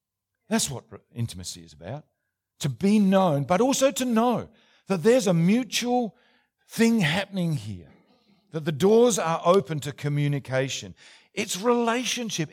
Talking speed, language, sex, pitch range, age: 135 wpm, English, male, 145-210 Hz, 50-69